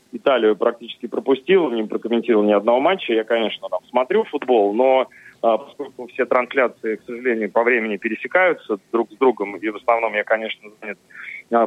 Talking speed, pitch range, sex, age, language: 155 wpm, 110-125 Hz, male, 30-49, Russian